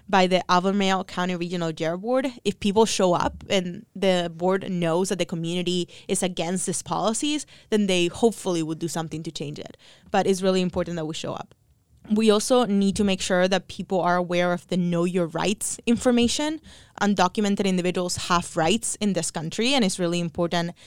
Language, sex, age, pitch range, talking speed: English, female, 20-39, 170-200 Hz, 190 wpm